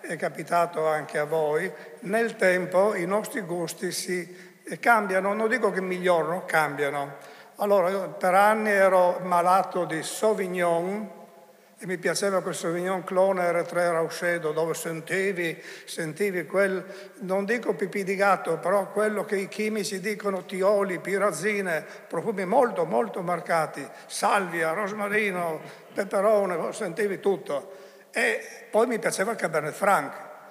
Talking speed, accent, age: 130 wpm, native, 60-79